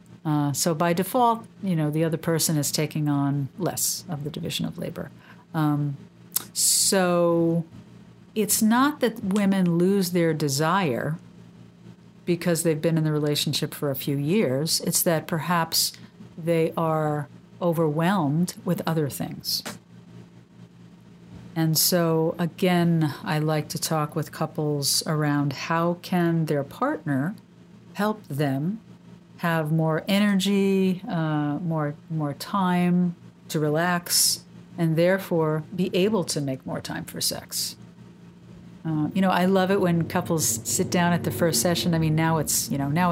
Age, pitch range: 50-69, 150-180 Hz